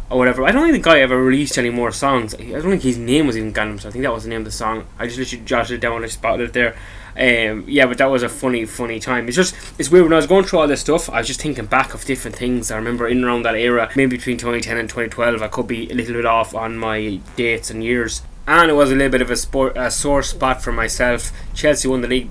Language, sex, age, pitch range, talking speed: English, male, 10-29, 120-145 Hz, 300 wpm